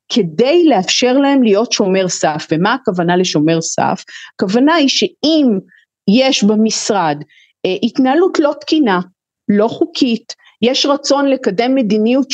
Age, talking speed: 40-59, 115 wpm